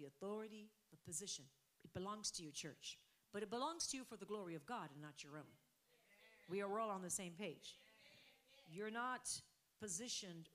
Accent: American